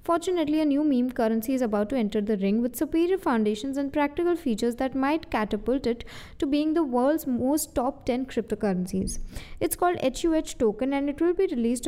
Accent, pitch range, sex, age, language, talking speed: Indian, 230-310 Hz, female, 20-39, English, 190 wpm